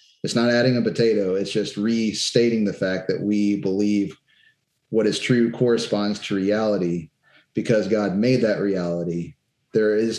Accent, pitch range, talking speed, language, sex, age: American, 100-115 Hz, 155 wpm, English, male, 30-49